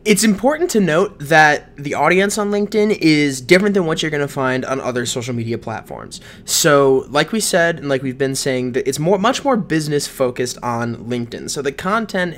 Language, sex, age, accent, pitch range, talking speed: English, male, 20-39, American, 130-190 Hz, 205 wpm